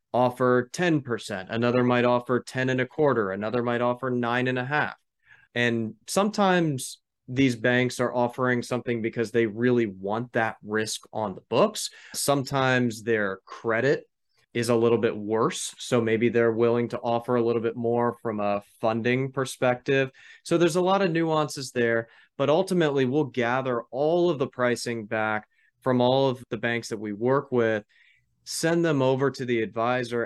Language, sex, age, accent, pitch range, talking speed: English, male, 20-39, American, 115-130 Hz, 170 wpm